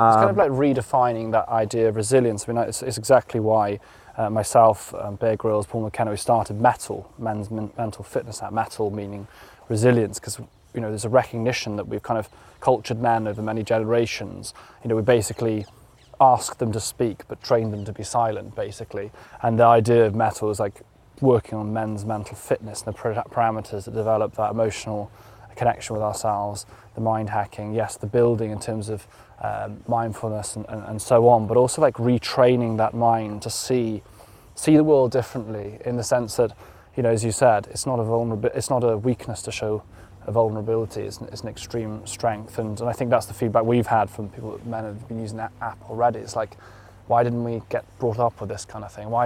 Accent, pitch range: British, 105-120 Hz